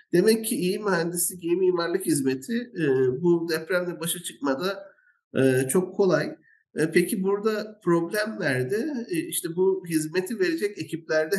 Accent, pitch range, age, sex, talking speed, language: native, 135-190 Hz, 50-69, male, 130 wpm, Turkish